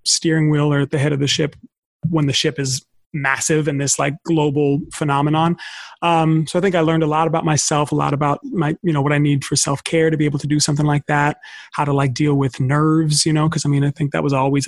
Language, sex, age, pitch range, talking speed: English, male, 30-49, 140-160 Hz, 260 wpm